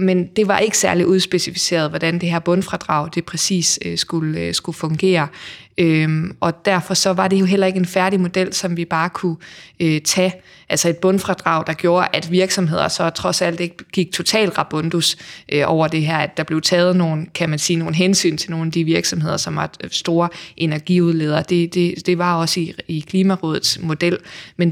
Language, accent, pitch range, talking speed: Danish, native, 165-190 Hz, 185 wpm